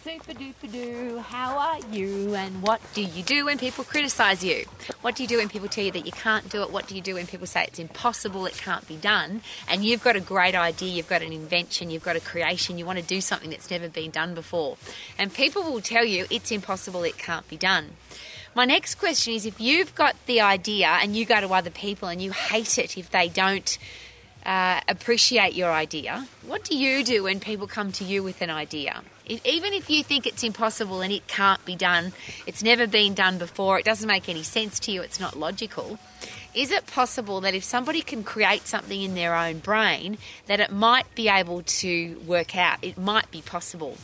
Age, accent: 20-39, Australian